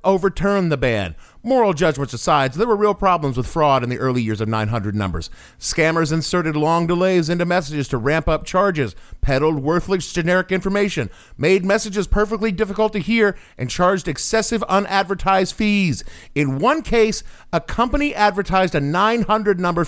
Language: English